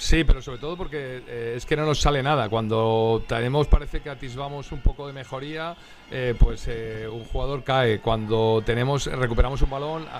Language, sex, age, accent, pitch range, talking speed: Spanish, male, 40-59, Spanish, 120-145 Hz, 195 wpm